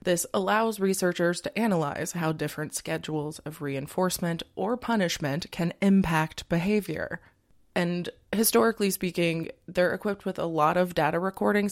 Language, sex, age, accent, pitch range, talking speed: English, female, 20-39, American, 165-195 Hz, 135 wpm